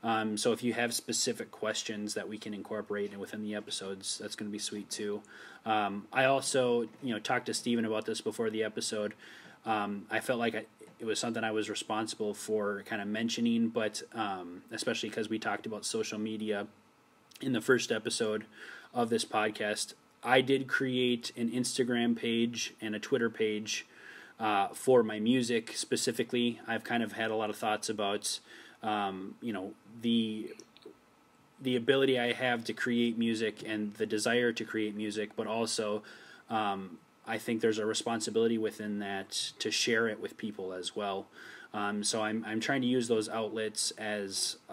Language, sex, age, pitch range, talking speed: English, male, 20-39, 105-115 Hz, 175 wpm